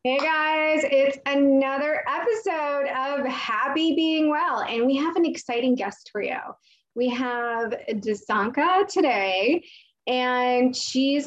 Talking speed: 120 wpm